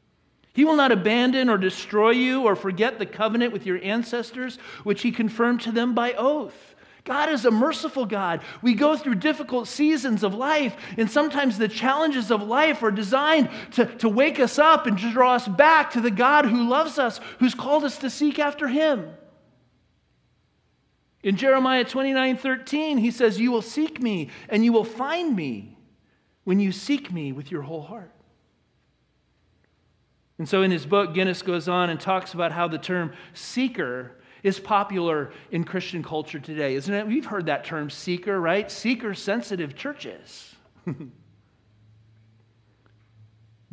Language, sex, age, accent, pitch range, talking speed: English, male, 40-59, American, 190-260 Hz, 165 wpm